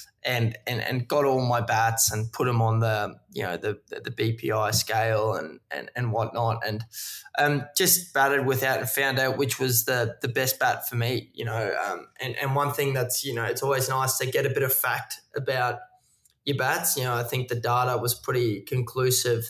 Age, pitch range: 20-39, 115-135 Hz